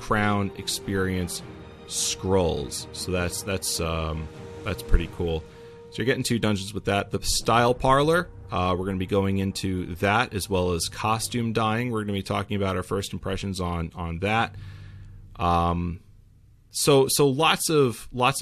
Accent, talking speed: American, 165 wpm